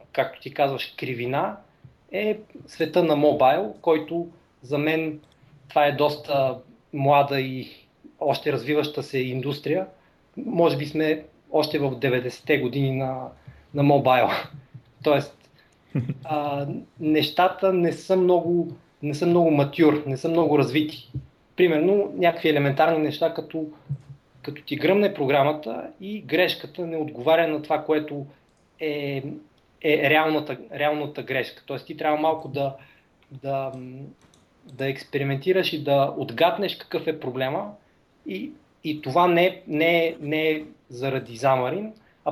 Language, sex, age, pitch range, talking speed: Bulgarian, male, 30-49, 140-160 Hz, 125 wpm